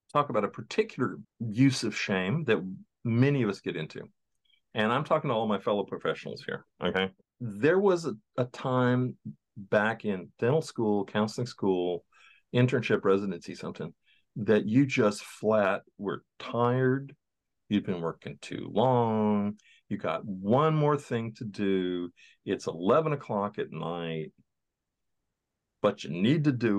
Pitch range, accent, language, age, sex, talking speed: 100-130 Hz, American, English, 50-69, male, 150 wpm